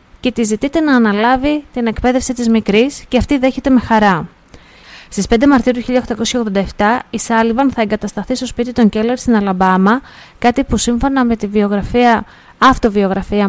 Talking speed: 160 wpm